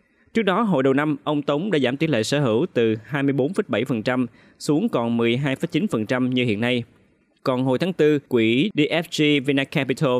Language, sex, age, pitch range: Vietnamese, male, 20-39, 120-150 Hz